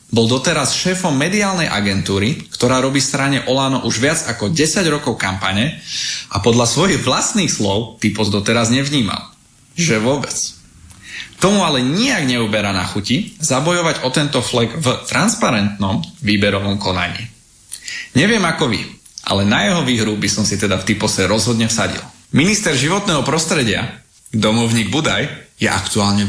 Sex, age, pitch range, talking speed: male, 30-49, 105-140 Hz, 140 wpm